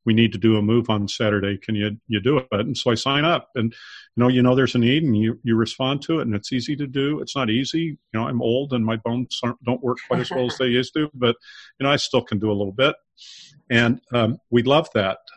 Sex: male